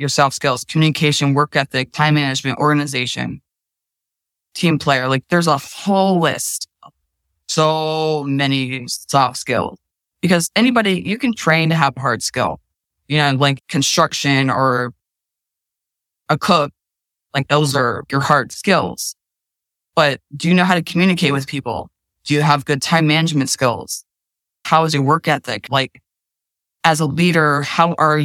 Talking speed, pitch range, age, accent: 145 wpm, 140-160 Hz, 20-39, American